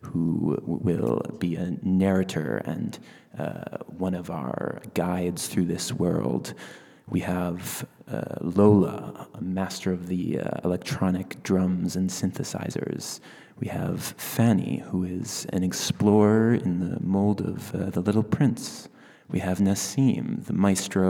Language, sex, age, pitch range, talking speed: French, male, 30-49, 90-100 Hz, 135 wpm